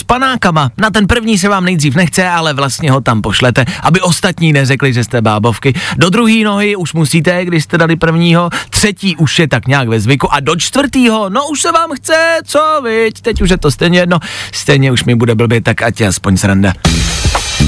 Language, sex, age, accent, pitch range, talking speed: Czech, male, 30-49, native, 145-215 Hz, 205 wpm